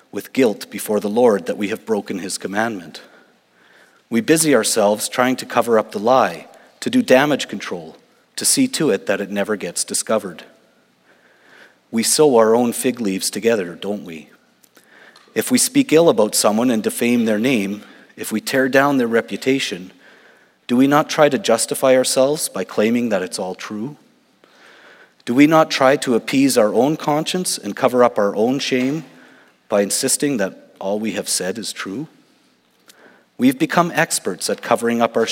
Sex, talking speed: male, 175 wpm